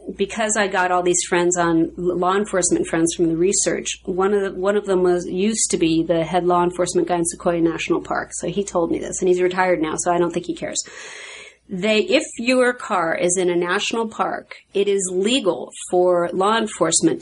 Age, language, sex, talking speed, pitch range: 40-59, English, female, 215 wpm, 175-205 Hz